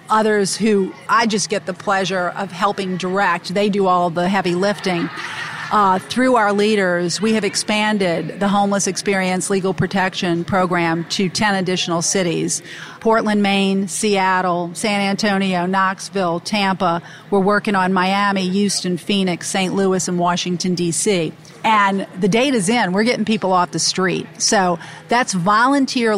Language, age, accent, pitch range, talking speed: English, 40-59, American, 175-205 Hz, 145 wpm